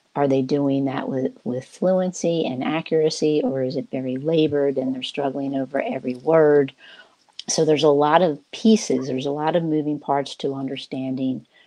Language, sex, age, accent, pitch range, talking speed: English, female, 50-69, American, 135-155 Hz, 175 wpm